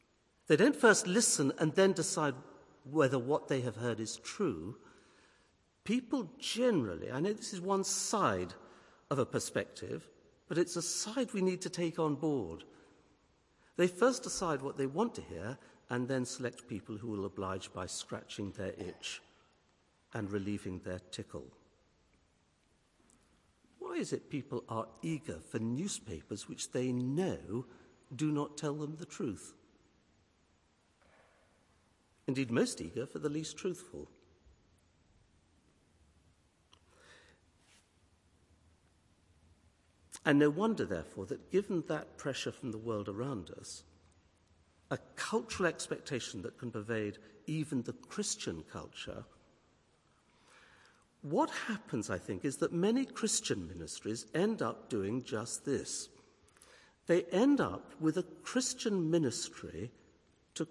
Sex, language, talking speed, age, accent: male, English, 125 wpm, 60-79, British